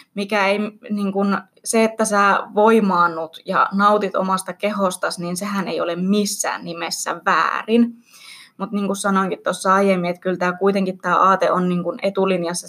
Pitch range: 180-215 Hz